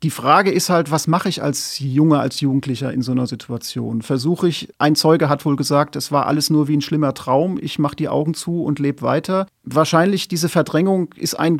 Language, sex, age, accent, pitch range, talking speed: German, male, 40-59, German, 130-155 Hz, 220 wpm